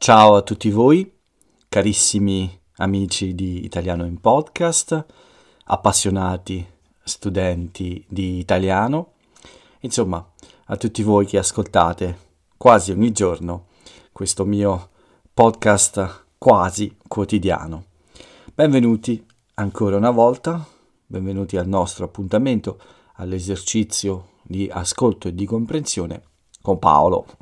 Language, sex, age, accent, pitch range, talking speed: Italian, male, 40-59, native, 90-110 Hz, 95 wpm